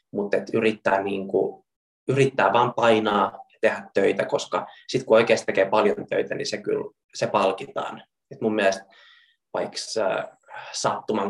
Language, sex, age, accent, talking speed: Finnish, male, 20-39, native, 140 wpm